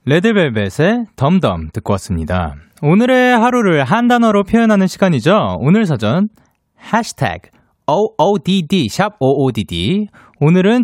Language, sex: Korean, male